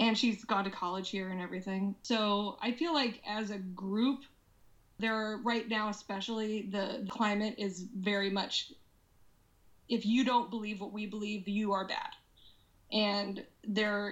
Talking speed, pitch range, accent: 155 wpm, 200-275 Hz, American